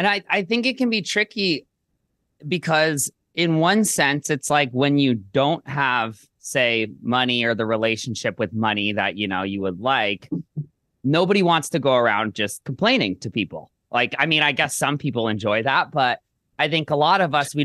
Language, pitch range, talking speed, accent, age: English, 115-160 Hz, 195 wpm, American, 30-49